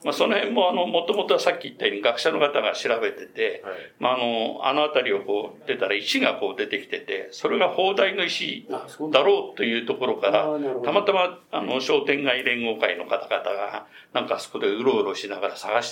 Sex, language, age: male, Japanese, 60-79